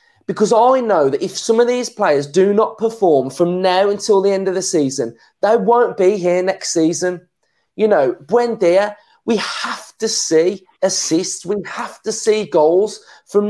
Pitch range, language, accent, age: 180-225 Hz, English, British, 20-39